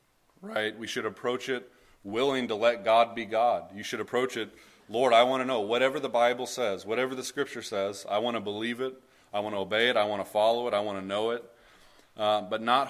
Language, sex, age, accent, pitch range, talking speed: English, male, 30-49, American, 100-120 Hz, 235 wpm